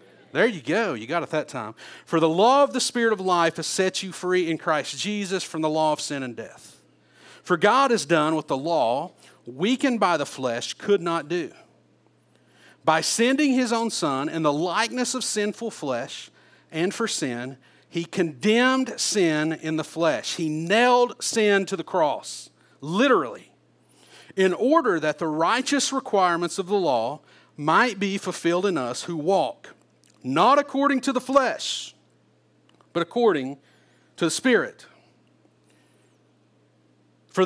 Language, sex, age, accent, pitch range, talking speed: English, male, 40-59, American, 165-235 Hz, 155 wpm